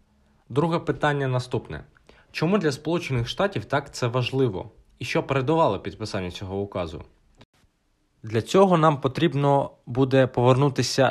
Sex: male